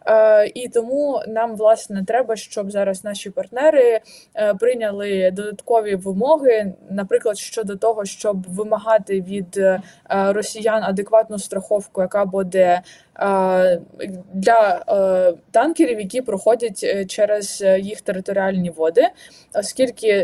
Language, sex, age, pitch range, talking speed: Ukrainian, female, 20-39, 200-235 Hz, 95 wpm